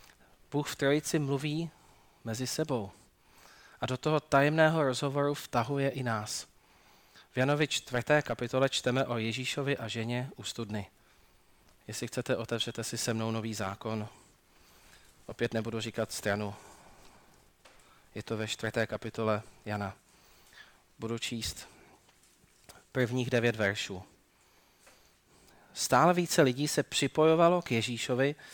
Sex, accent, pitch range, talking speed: male, native, 115-145 Hz, 115 wpm